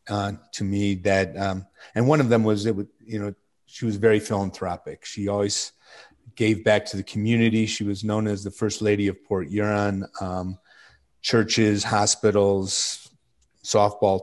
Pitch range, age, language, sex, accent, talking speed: 100-115 Hz, 50-69, English, male, American, 165 wpm